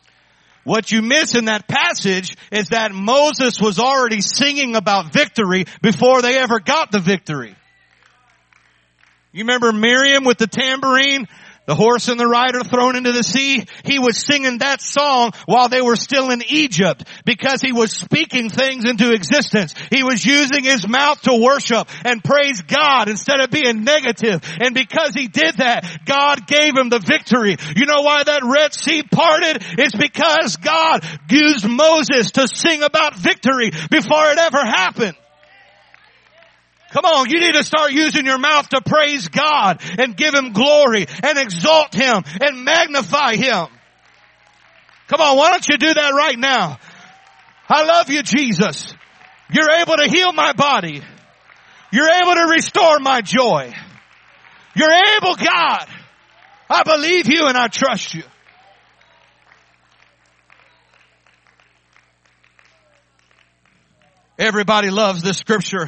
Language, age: English, 50-69